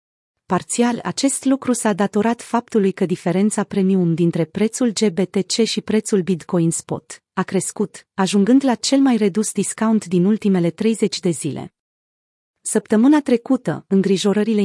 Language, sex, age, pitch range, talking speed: Romanian, female, 30-49, 180-220 Hz, 130 wpm